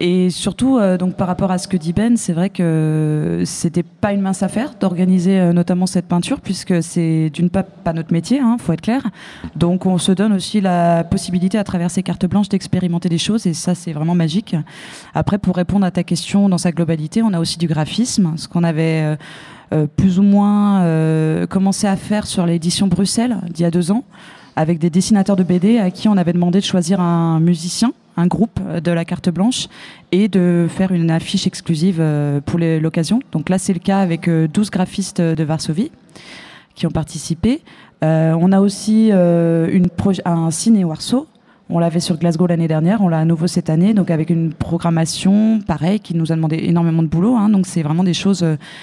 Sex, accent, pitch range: female, French, 165-195 Hz